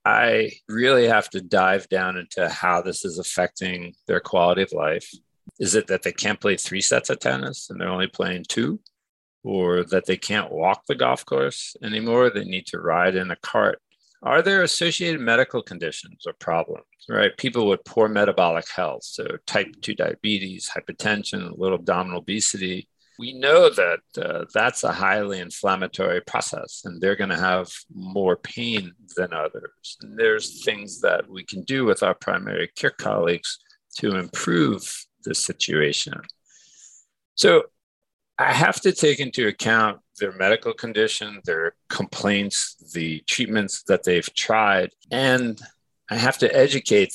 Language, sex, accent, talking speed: English, male, American, 160 wpm